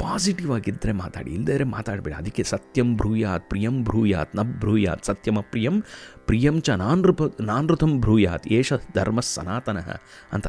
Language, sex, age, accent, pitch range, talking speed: Kannada, male, 30-49, native, 95-160 Hz, 130 wpm